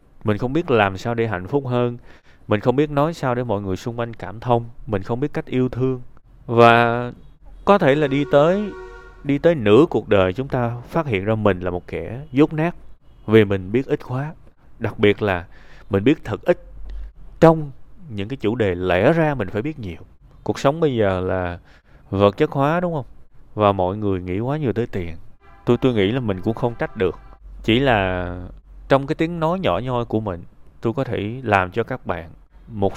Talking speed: 215 wpm